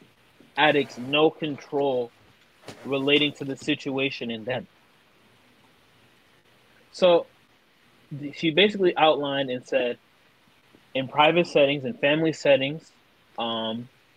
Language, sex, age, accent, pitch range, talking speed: English, male, 20-39, American, 135-165 Hz, 95 wpm